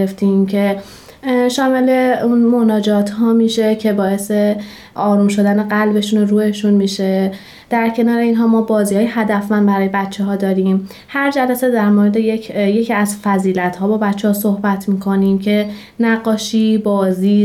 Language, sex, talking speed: Persian, female, 150 wpm